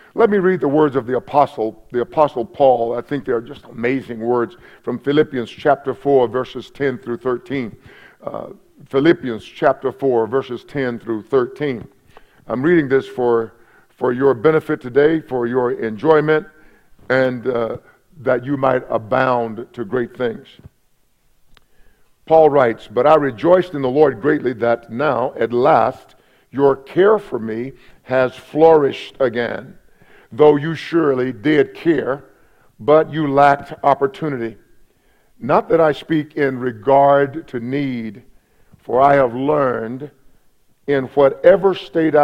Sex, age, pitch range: male, 50-69, 120-145 Hz